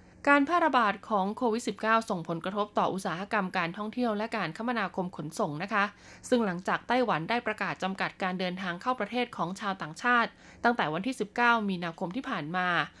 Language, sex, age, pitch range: Thai, female, 20-39, 185-245 Hz